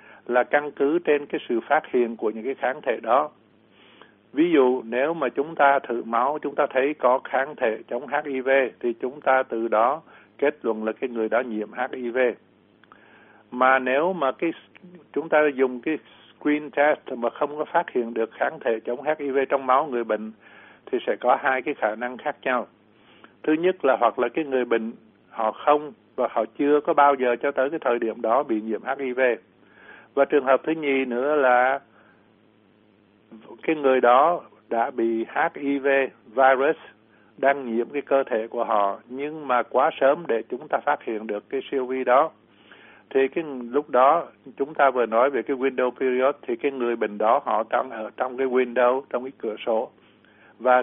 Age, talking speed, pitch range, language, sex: 60-79, 195 wpm, 115-145 Hz, Vietnamese, male